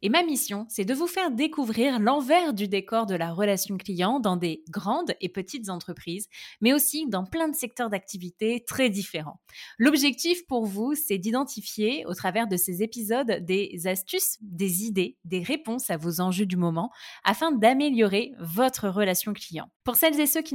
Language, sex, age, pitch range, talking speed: French, female, 20-39, 190-245 Hz, 180 wpm